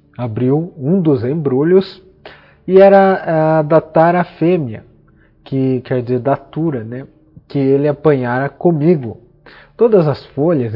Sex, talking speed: male, 125 wpm